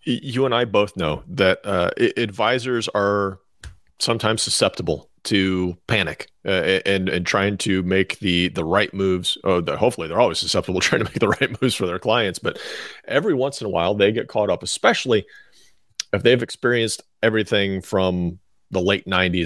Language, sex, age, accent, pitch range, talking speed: English, male, 30-49, American, 90-105 Hz, 175 wpm